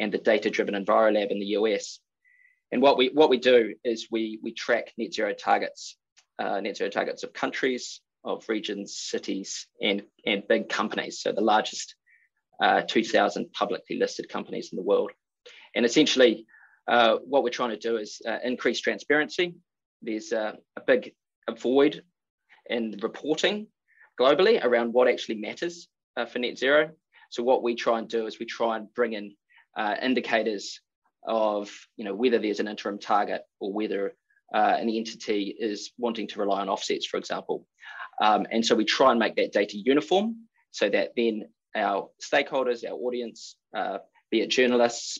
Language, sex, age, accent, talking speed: English, male, 20-39, Australian, 170 wpm